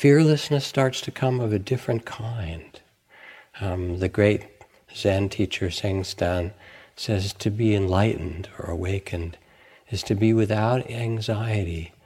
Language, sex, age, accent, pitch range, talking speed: English, male, 60-79, American, 90-110 Hz, 125 wpm